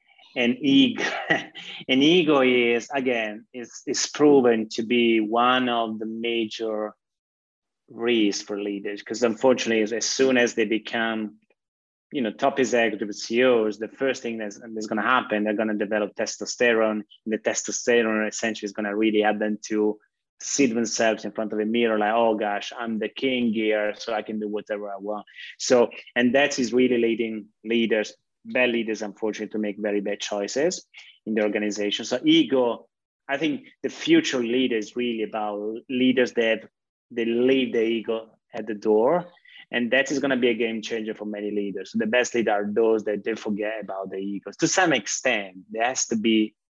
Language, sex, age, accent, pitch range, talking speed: English, male, 20-39, Italian, 105-120 Hz, 180 wpm